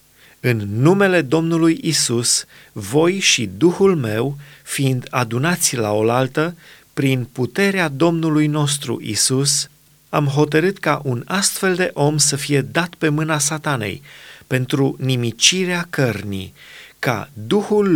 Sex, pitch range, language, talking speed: male, 125-160 Hz, Romanian, 115 wpm